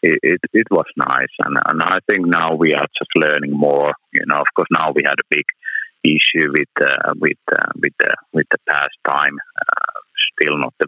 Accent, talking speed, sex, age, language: Finnish, 215 wpm, male, 30-49, Swedish